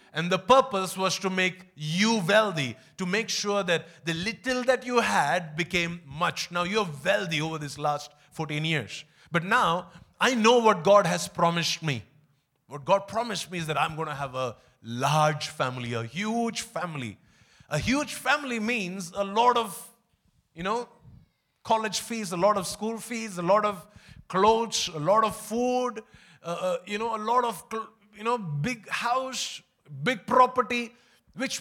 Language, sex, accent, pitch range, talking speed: English, male, Indian, 155-220 Hz, 170 wpm